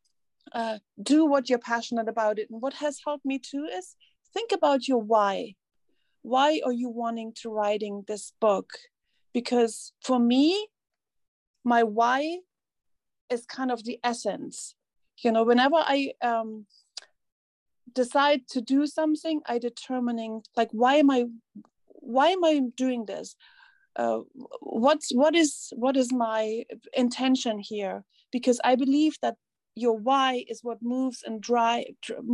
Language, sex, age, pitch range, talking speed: English, female, 40-59, 225-270 Hz, 140 wpm